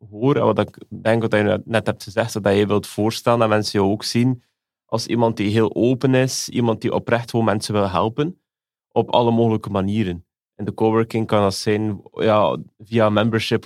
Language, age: Dutch, 30-49